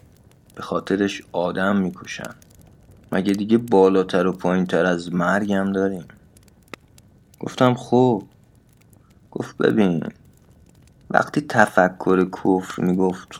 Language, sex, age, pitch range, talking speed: Persian, male, 30-49, 90-105 Hz, 95 wpm